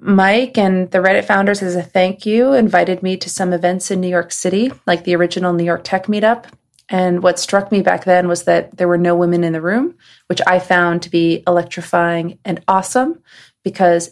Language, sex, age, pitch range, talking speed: English, female, 30-49, 175-200 Hz, 210 wpm